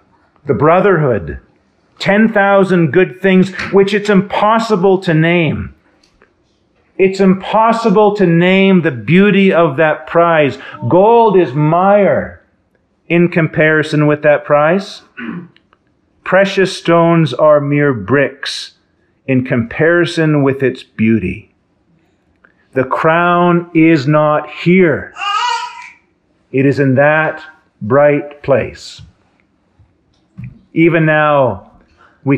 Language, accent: English, American